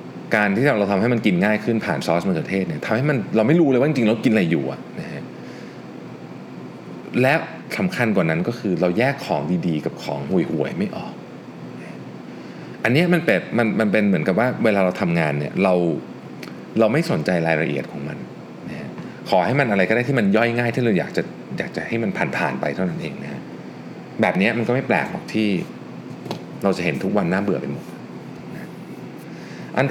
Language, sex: Thai, male